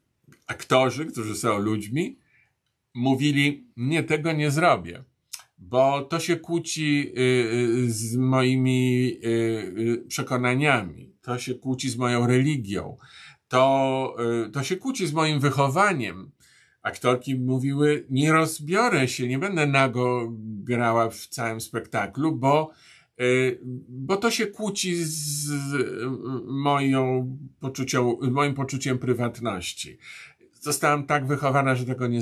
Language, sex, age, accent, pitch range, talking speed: Polish, male, 50-69, native, 120-155 Hz, 115 wpm